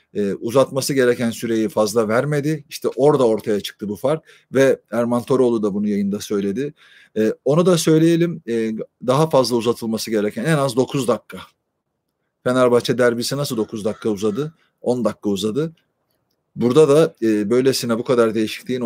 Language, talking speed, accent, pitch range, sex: Turkish, 155 wpm, native, 115-135 Hz, male